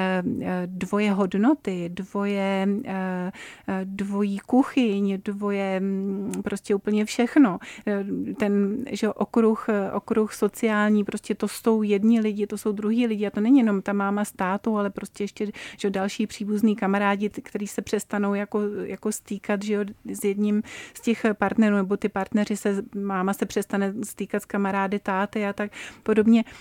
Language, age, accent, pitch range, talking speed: Czech, 30-49, native, 195-215 Hz, 140 wpm